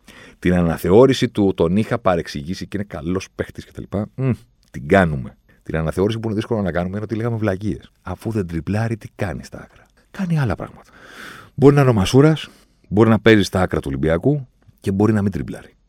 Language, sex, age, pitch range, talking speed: Greek, male, 40-59, 90-115 Hz, 195 wpm